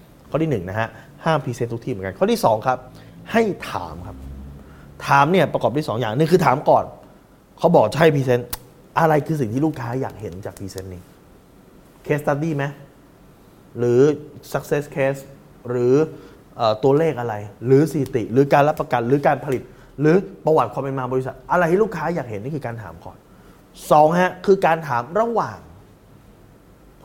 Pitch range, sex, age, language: 110-150 Hz, male, 20-39, Thai